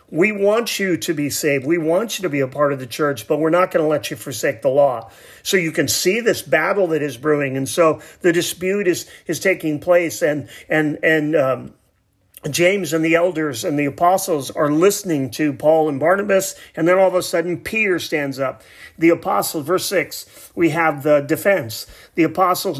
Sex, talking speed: male, 210 wpm